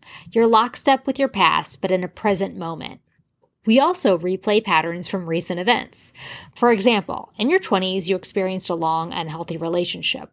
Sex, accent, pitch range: female, American, 175-225 Hz